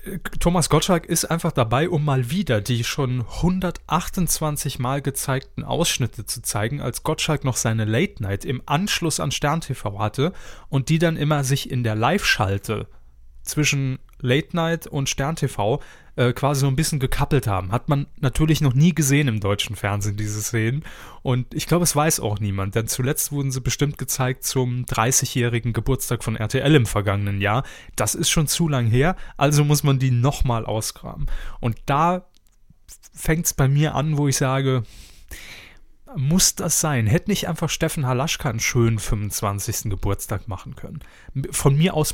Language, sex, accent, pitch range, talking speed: German, male, German, 120-155 Hz, 170 wpm